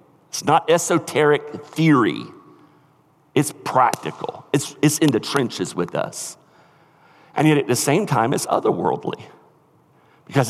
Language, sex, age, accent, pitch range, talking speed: English, male, 50-69, American, 140-170 Hz, 125 wpm